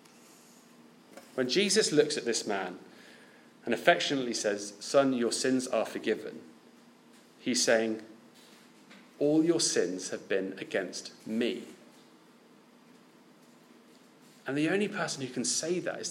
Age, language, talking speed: 40-59, English, 120 wpm